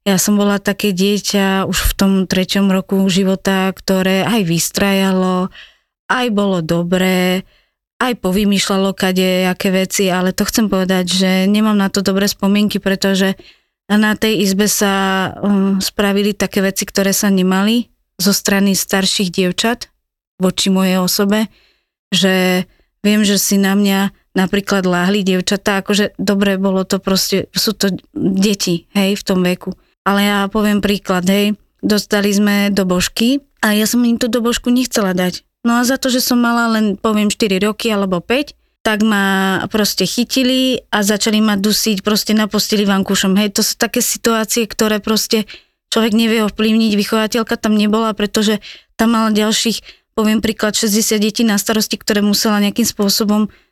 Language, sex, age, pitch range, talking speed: Slovak, female, 20-39, 195-220 Hz, 155 wpm